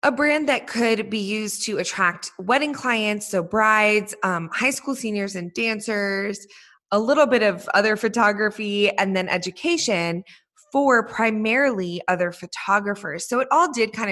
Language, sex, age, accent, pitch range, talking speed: English, female, 20-39, American, 185-250 Hz, 155 wpm